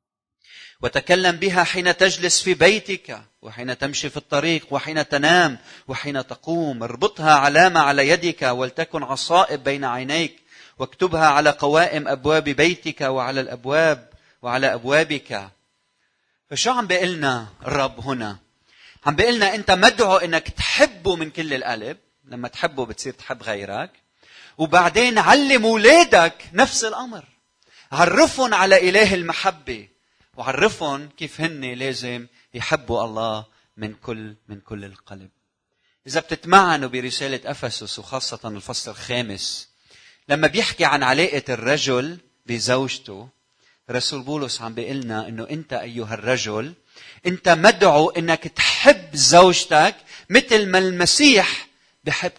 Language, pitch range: Arabic, 125-180 Hz